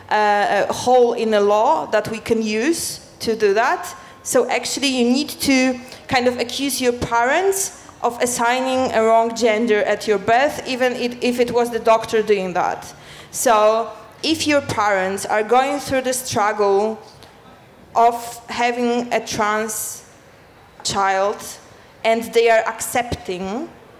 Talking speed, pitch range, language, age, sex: 145 wpm, 210-250 Hz, Danish, 20-39, female